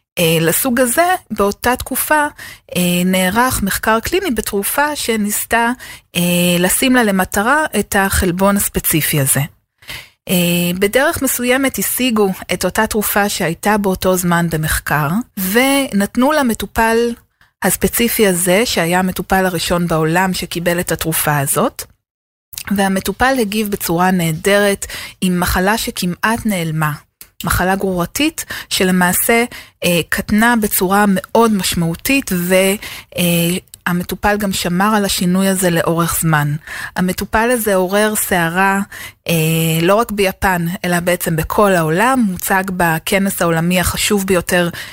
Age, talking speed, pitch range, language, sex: 30-49, 105 wpm, 175-225 Hz, Hebrew, female